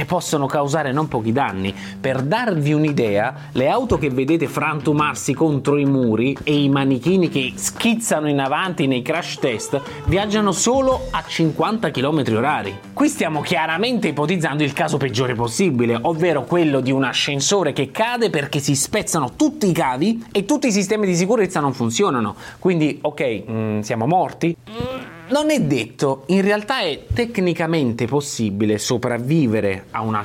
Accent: native